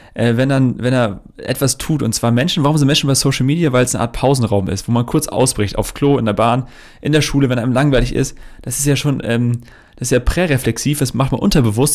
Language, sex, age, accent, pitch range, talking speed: German, male, 30-49, German, 120-145 Hz, 255 wpm